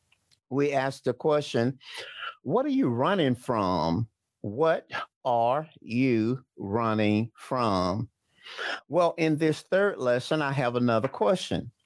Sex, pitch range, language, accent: male, 110-140 Hz, English, American